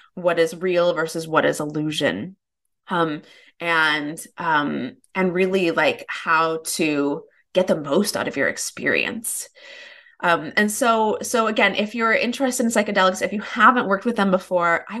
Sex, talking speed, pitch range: female, 160 wpm, 165-215 Hz